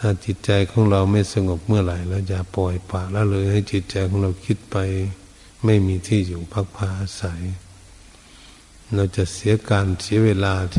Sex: male